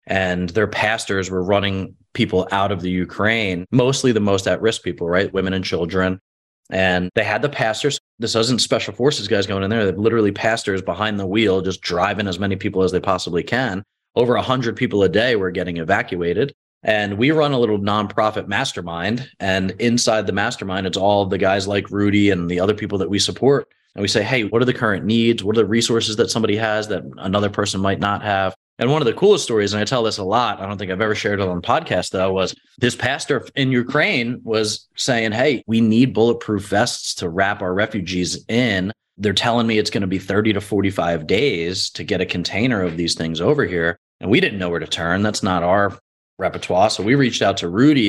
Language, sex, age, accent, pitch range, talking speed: English, male, 20-39, American, 95-115 Hz, 225 wpm